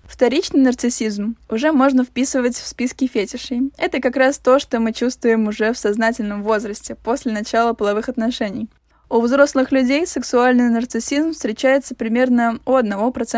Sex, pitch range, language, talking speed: female, 230-275 Hz, Russian, 135 wpm